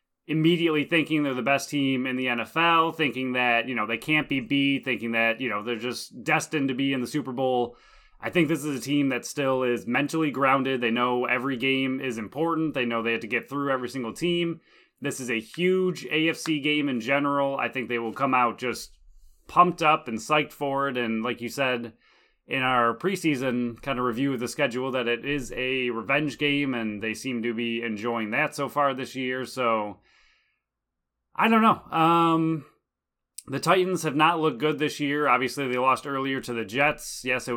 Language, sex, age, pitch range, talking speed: English, male, 20-39, 120-145 Hz, 210 wpm